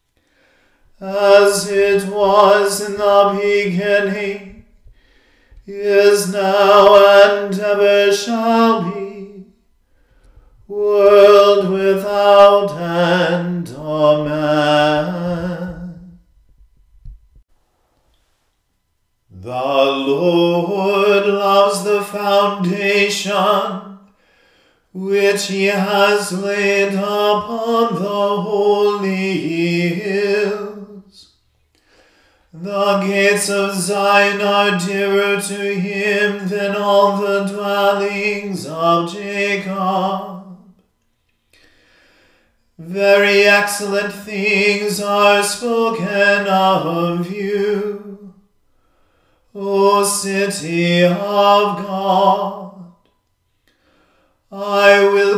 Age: 40-59